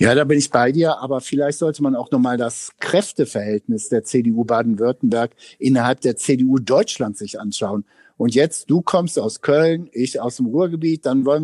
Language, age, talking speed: German, 60-79, 185 wpm